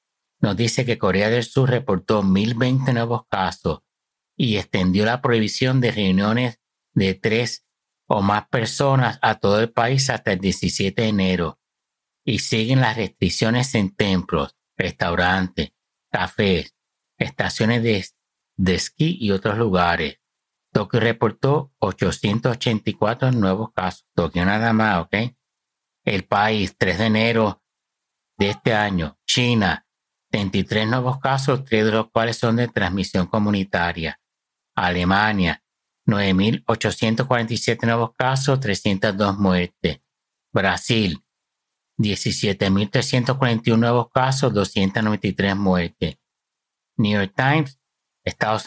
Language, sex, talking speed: Spanish, male, 110 wpm